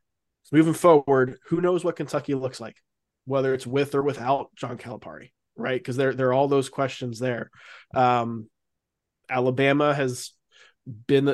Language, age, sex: English, 20-39, male